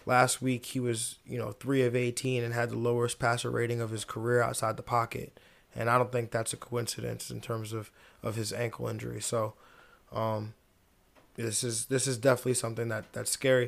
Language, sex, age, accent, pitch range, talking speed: English, male, 20-39, American, 115-130 Hz, 200 wpm